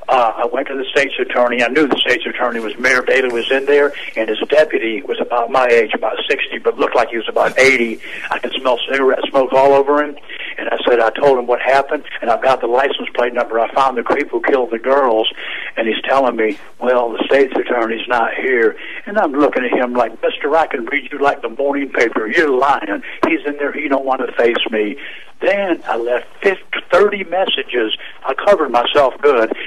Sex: male